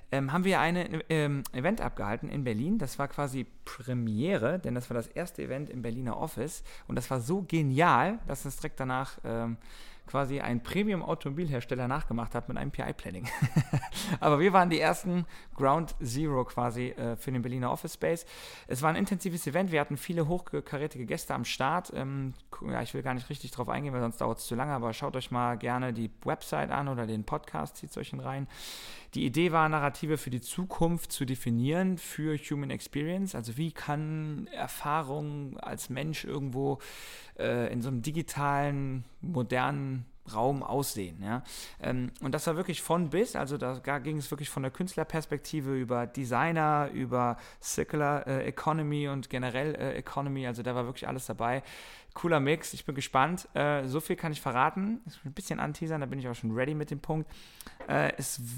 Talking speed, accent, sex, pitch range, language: 180 wpm, German, male, 125-155 Hz, German